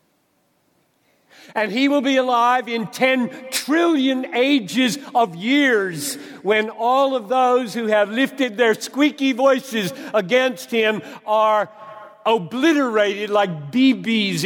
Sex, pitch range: male, 225-280 Hz